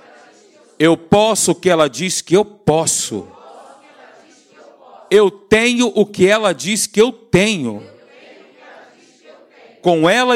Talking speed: 115 wpm